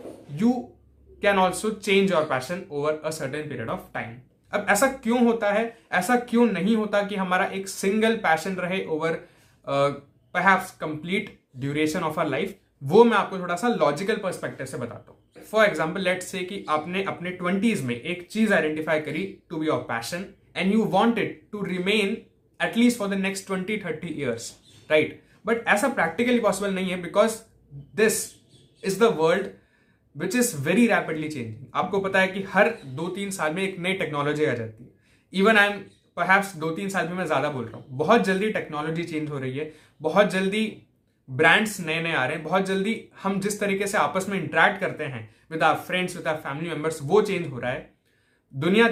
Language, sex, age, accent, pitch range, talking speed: Hindi, male, 20-39, native, 155-205 Hz, 195 wpm